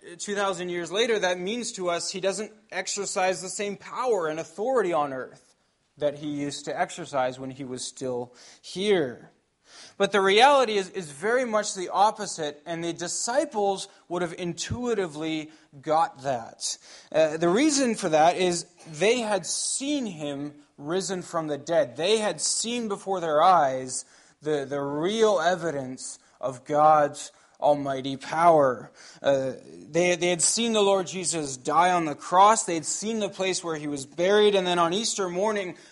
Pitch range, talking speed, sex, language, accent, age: 150-200 Hz, 165 wpm, male, English, American, 20-39